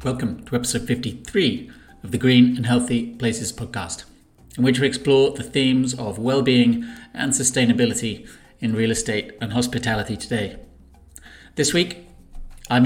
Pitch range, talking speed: 120-135 Hz, 140 wpm